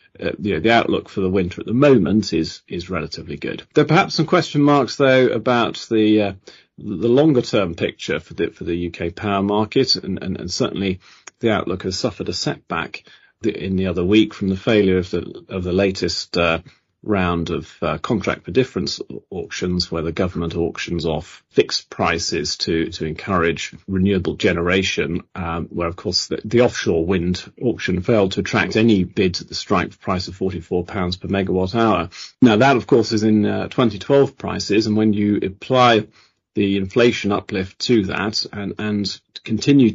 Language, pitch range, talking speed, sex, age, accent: English, 90-110 Hz, 185 wpm, male, 30-49, British